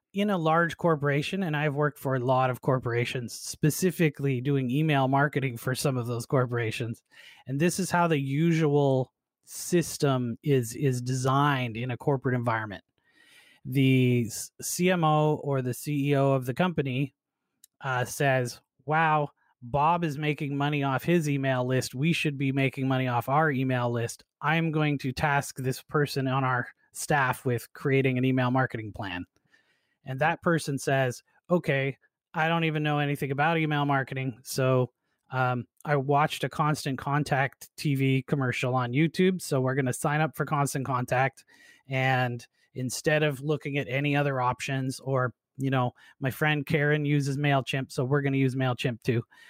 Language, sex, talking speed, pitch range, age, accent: English, male, 160 wpm, 130-150 Hz, 30-49, American